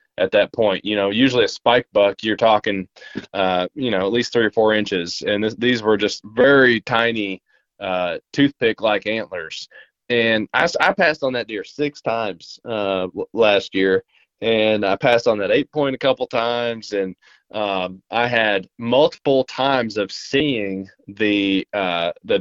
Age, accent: 20-39, American